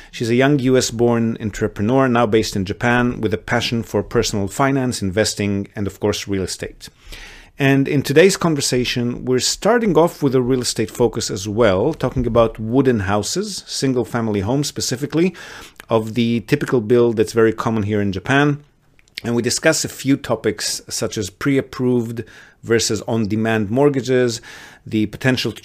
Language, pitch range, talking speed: English, 105-125 Hz, 160 wpm